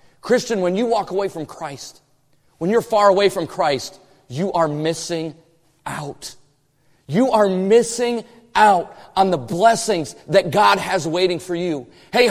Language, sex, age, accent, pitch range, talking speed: English, male, 30-49, American, 175-265 Hz, 150 wpm